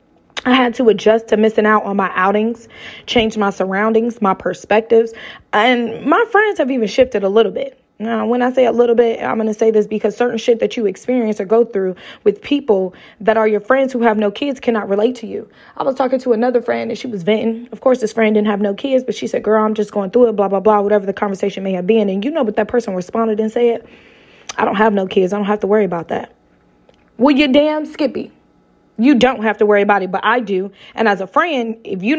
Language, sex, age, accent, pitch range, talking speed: English, female, 20-39, American, 210-260 Hz, 255 wpm